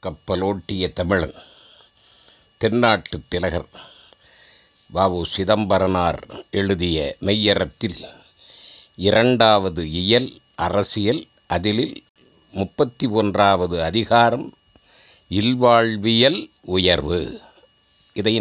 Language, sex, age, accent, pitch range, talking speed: Tamil, male, 50-69, native, 95-125 Hz, 55 wpm